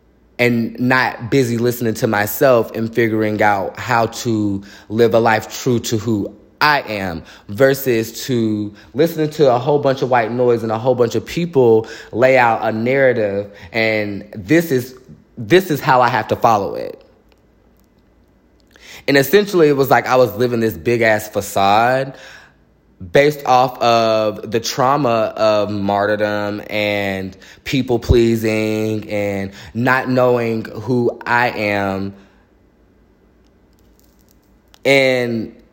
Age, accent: 20-39, American